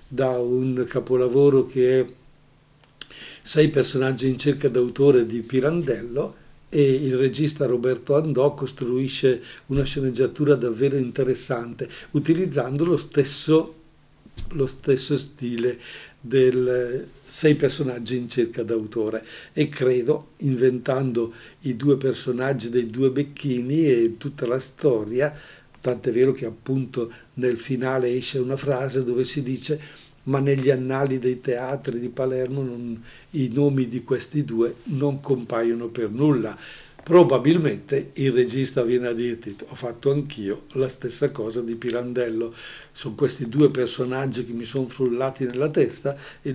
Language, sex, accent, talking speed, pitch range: Italian, male, native, 130 wpm, 125-145 Hz